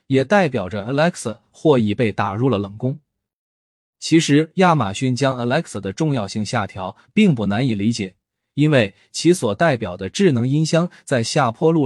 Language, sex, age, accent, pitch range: Chinese, male, 20-39, native, 115-160 Hz